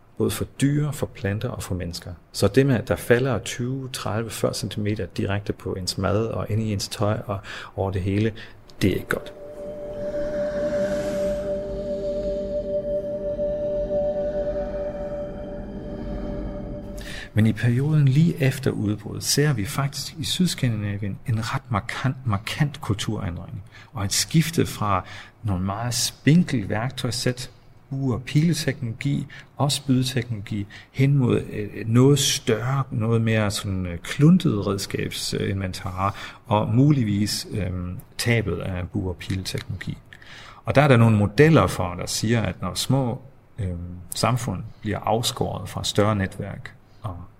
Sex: male